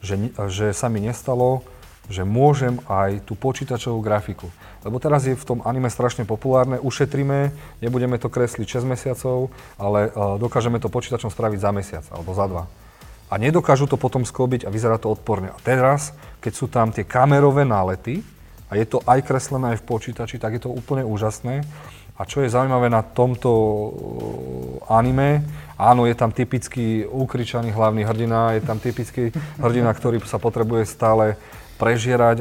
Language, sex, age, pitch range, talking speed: Slovak, male, 30-49, 105-125 Hz, 165 wpm